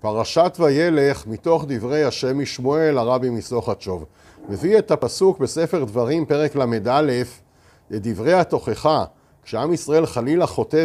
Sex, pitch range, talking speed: male, 125-180 Hz, 120 wpm